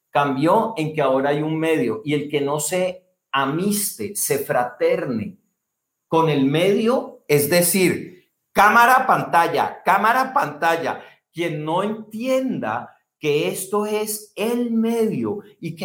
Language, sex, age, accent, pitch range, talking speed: Spanish, male, 50-69, Mexican, 165-215 Hz, 130 wpm